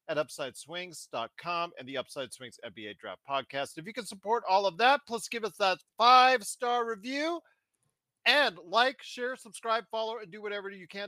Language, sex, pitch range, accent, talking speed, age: English, male, 180-245 Hz, American, 175 wpm, 40-59